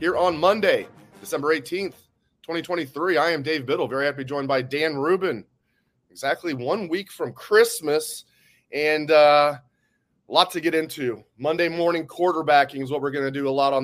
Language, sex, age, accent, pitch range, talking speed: English, male, 30-49, American, 135-170 Hz, 180 wpm